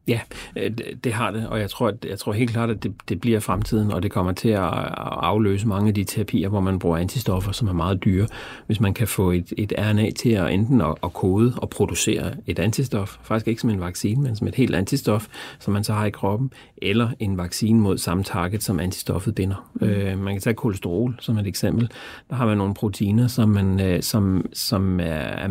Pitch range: 95-115 Hz